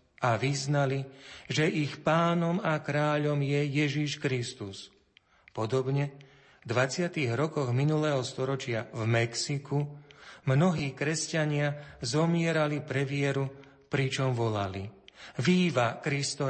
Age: 40-59